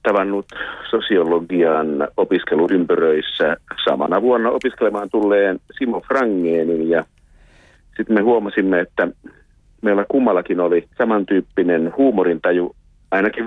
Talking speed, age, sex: 90 wpm, 50-69, male